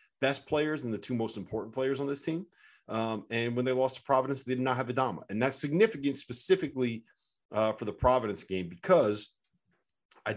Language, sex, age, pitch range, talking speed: English, male, 30-49, 100-125 Hz, 195 wpm